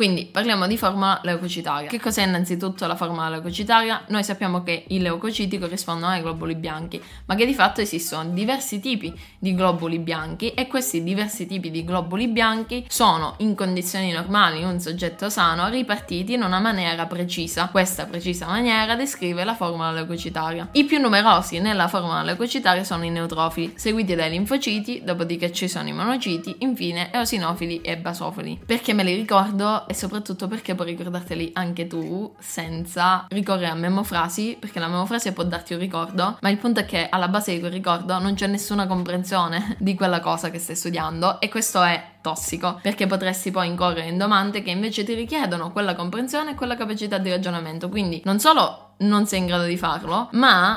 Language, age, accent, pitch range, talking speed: Italian, 20-39, native, 170-210 Hz, 180 wpm